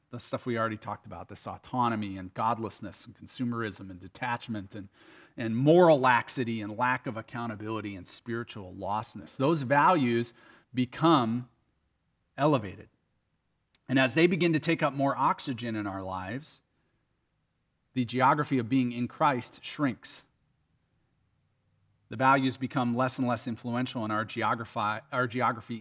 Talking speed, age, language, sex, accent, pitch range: 140 wpm, 40-59, English, male, American, 120-160 Hz